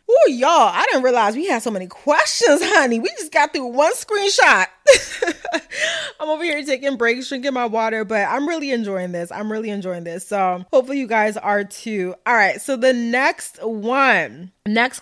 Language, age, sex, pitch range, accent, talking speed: English, 20-39, female, 180-235 Hz, American, 190 wpm